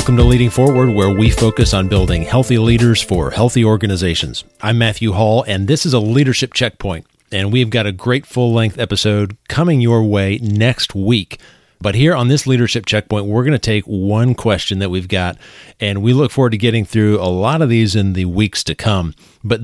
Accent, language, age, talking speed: American, English, 40-59, 205 wpm